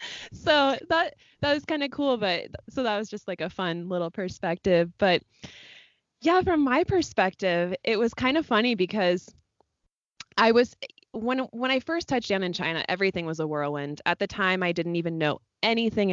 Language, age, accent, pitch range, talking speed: English, 20-39, American, 175-230 Hz, 185 wpm